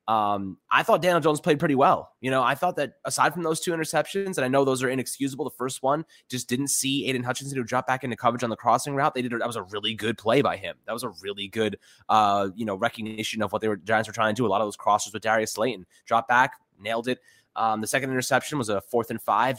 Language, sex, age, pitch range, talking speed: English, male, 20-39, 110-140 Hz, 275 wpm